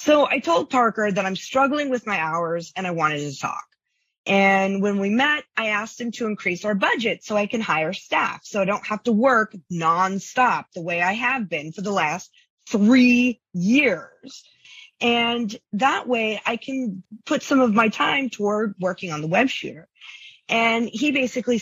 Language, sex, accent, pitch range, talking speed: English, female, American, 185-250 Hz, 185 wpm